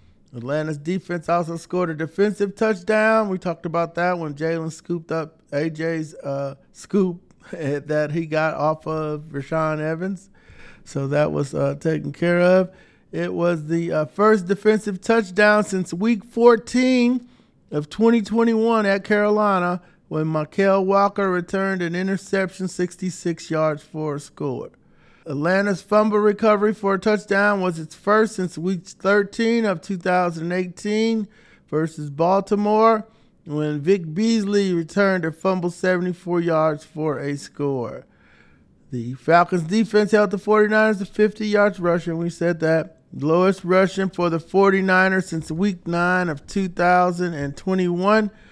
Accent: American